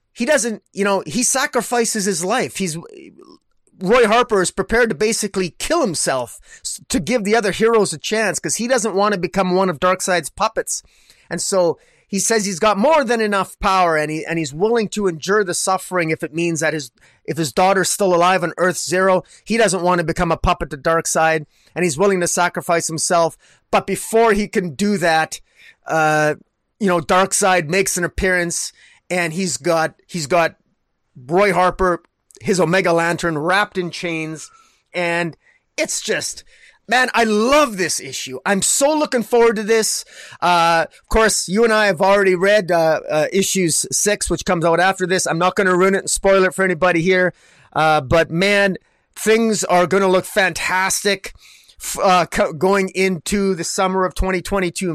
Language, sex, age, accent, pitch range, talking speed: English, male, 30-49, American, 170-210 Hz, 180 wpm